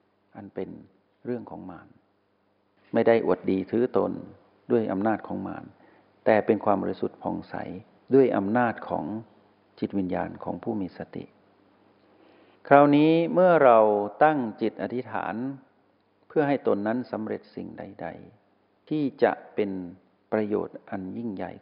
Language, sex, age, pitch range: Thai, male, 60-79, 100-120 Hz